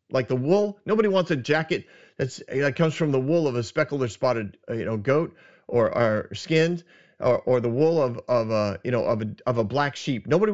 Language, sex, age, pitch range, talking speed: English, male, 40-59, 130-190 Hz, 230 wpm